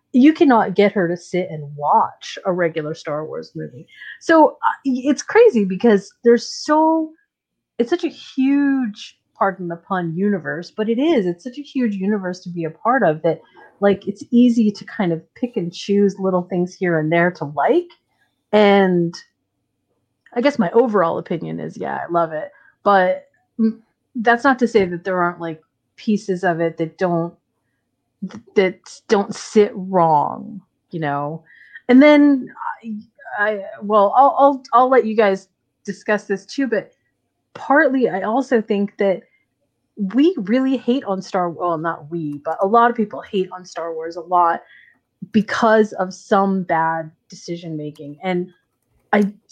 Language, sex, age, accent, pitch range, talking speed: English, female, 30-49, American, 175-235 Hz, 165 wpm